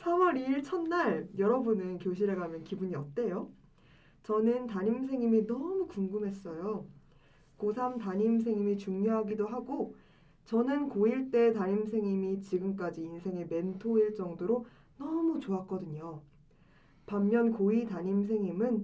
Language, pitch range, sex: Korean, 190-255 Hz, female